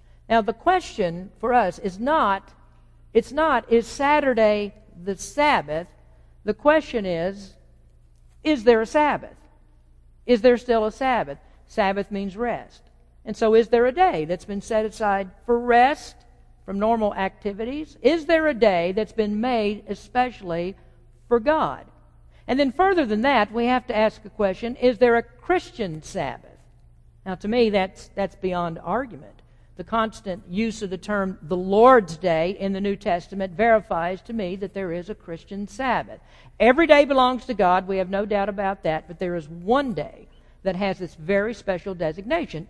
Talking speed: 170 wpm